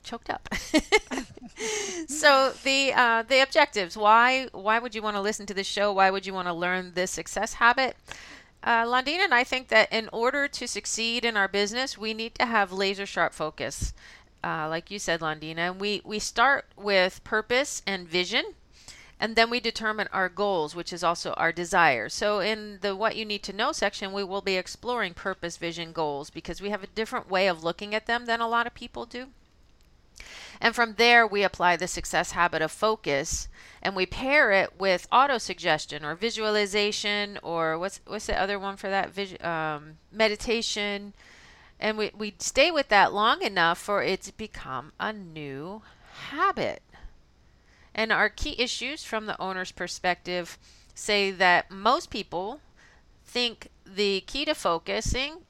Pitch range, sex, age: 185-235 Hz, female, 40-59